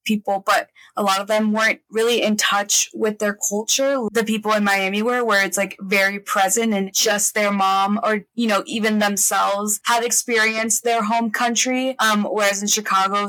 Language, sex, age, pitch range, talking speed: English, female, 20-39, 195-215 Hz, 185 wpm